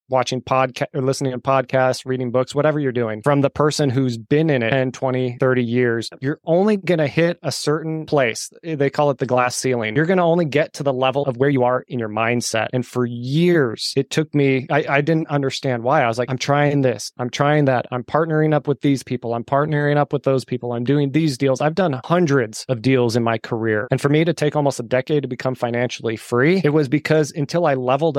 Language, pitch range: English, 125-150 Hz